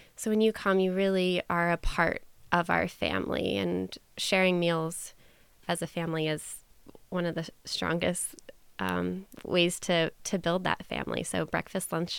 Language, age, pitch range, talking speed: English, 20-39, 170-195 Hz, 160 wpm